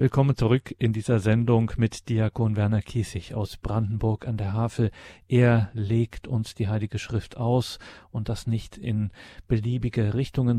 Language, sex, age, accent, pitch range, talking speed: German, male, 40-59, German, 105-125 Hz, 155 wpm